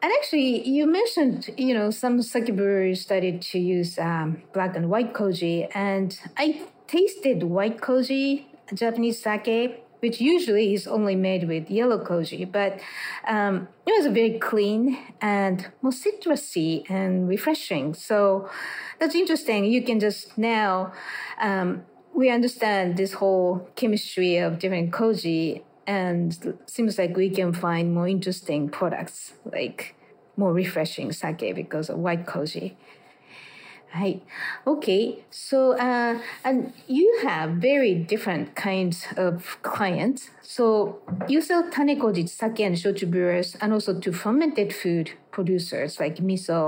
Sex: female